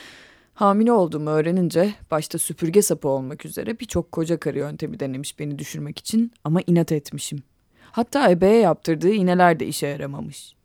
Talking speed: 145 wpm